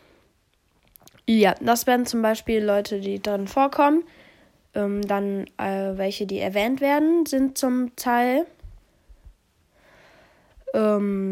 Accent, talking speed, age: German, 105 wpm, 10-29